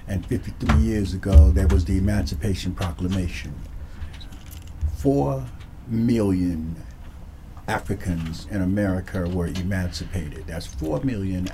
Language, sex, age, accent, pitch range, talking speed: English, male, 50-69, American, 80-100 Hz, 100 wpm